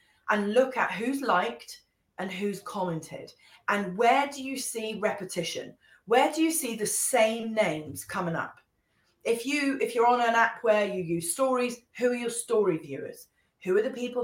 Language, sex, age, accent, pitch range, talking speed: English, female, 30-49, British, 190-280 Hz, 175 wpm